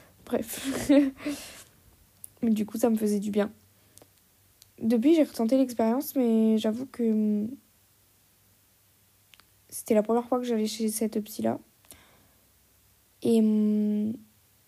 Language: French